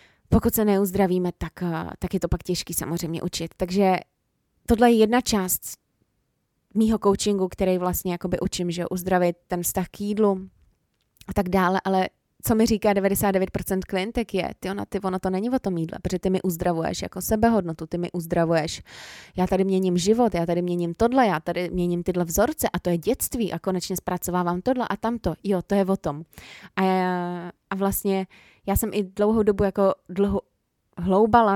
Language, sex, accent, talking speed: Czech, female, native, 185 wpm